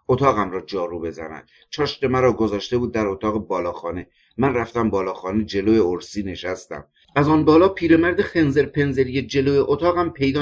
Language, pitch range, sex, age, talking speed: Persian, 105-140 Hz, male, 50-69, 150 wpm